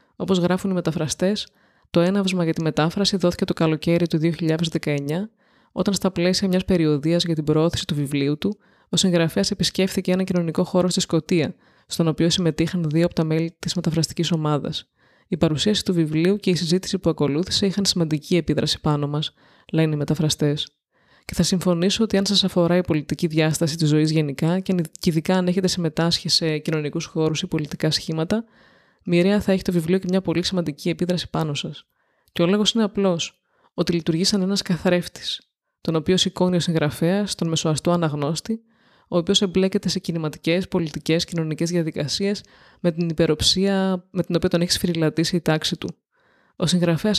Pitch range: 160-190 Hz